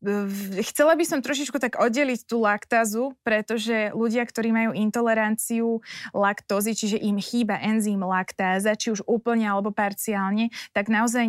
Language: Slovak